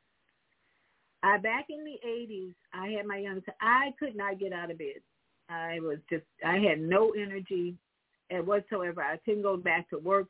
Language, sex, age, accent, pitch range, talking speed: English, female, 50-69, American, 180-235 Hz, 175 wpm